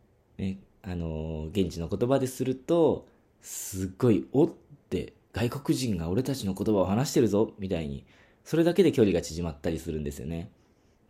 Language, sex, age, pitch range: Japanese, male, 20-39, 85-110 Hz